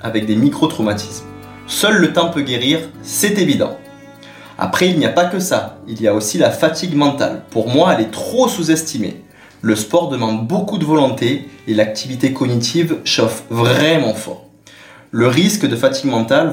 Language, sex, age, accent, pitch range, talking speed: French, male, 20-39, French, 115-170 Hz, 170 wpm